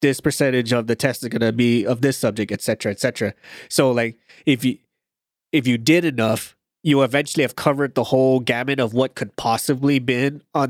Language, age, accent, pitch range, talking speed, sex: English, 20-39, American, 120-150 Hz, 200 wpm, male